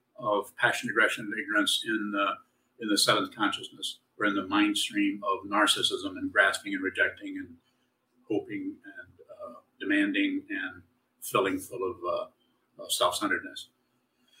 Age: 50-69